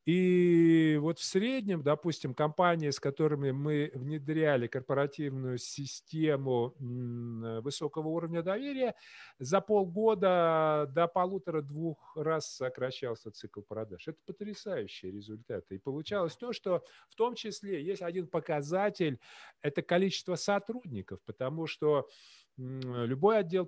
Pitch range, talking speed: 140-185 Hz, 110 wpm